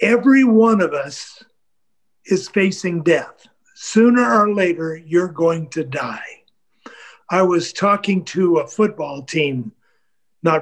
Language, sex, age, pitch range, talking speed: English, male, 50-69, 160-210 Hz, 125 wpm